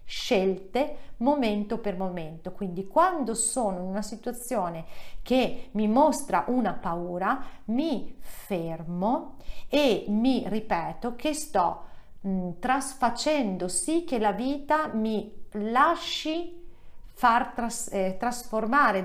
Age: 40-59